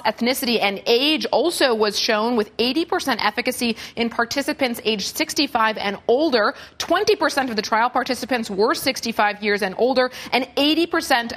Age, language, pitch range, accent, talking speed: 30-49, English, 215-255 Hz, American, 145 wpm